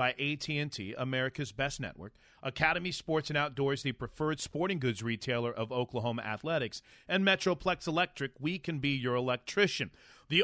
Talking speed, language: 150 wpm, English